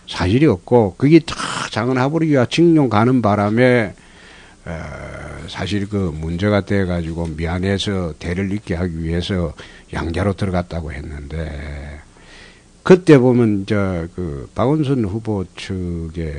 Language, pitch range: Korean, 90-145 Hz